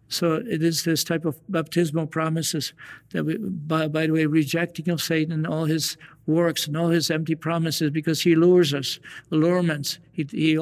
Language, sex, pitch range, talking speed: English, male, 155-165 Hz, 185 wpm